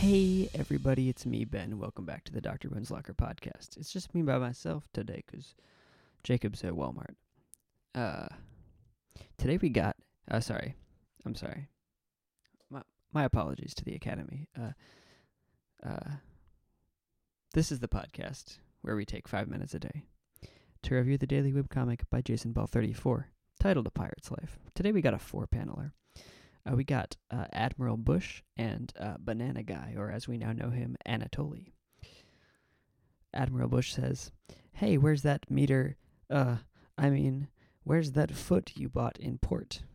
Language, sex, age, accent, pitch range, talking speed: English, male, 20-39, American, 110-145 Hz, 155 wpm